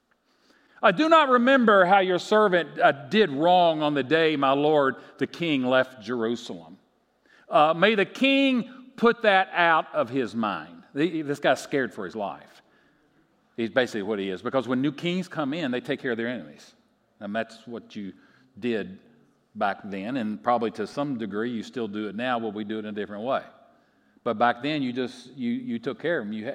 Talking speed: 200 wpm